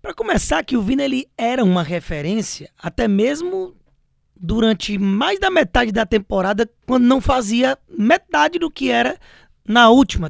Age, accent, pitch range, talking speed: 20-39, Brazilian, 175-255 Hz, 150 wpm